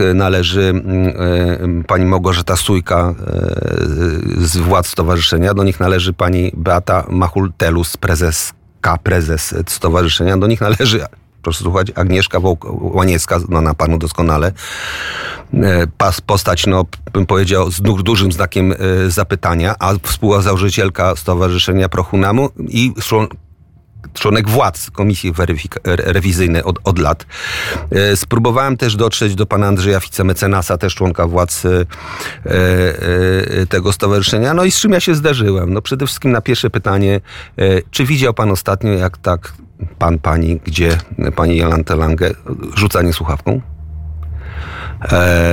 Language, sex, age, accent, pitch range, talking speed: Polish, male, 40-59, native, 85-100 Hz, 130 wpm